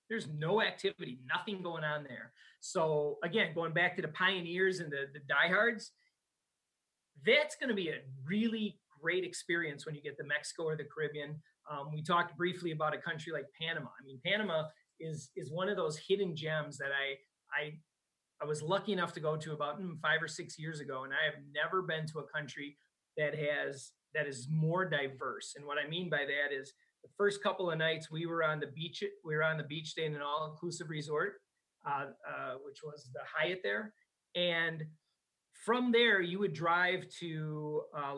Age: 30-49